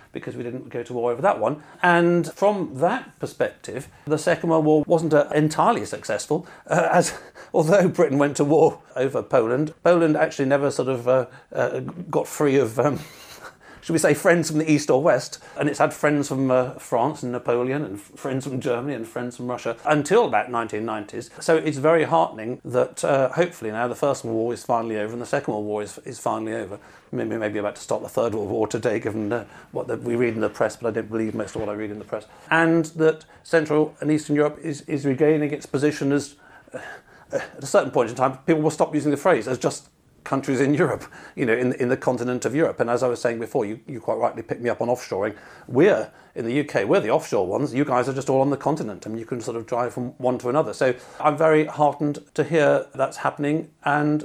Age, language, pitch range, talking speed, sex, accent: 40-59, English, 125-155 Hz, 235 wpm, male, British